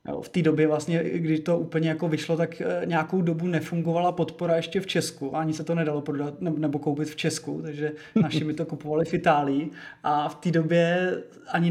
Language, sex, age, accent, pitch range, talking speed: Czech, male, 20-39, native, 155-175 Hz, 195 wpm